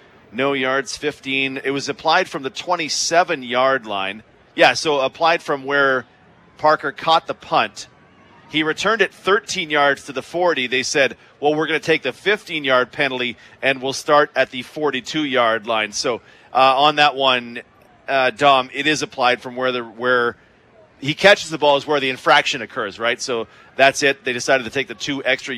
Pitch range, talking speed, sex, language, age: 130-150 Hz, 185 wpm, male, English, 40-59